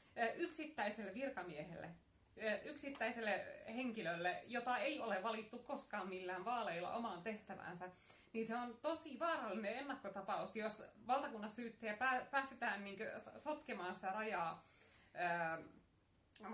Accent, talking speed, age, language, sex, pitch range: native, 100 wpm, 30-49, Finnish, female, 185-250 Hz